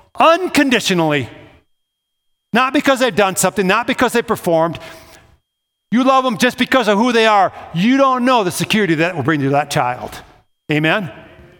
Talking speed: 165 wpm